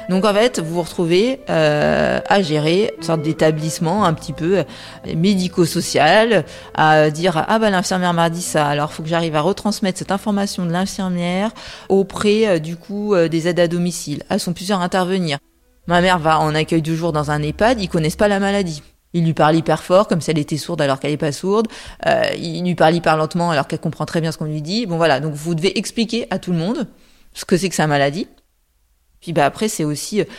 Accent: French